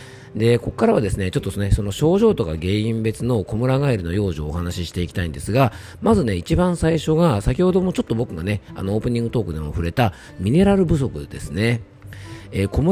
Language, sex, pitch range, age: Japanese, male, 90-135 Hz, 40-59